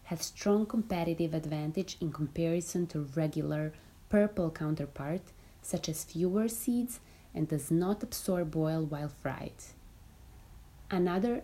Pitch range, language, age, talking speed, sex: 150-195 Hz, English, 30-49, 115 wpm, female